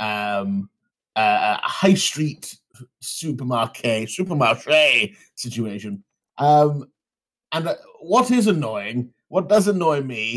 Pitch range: 125-175 Hz